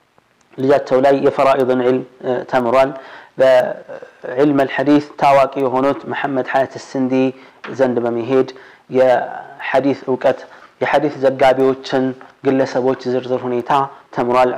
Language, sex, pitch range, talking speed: Amharic, male, 125-140 Hz, 85 wpm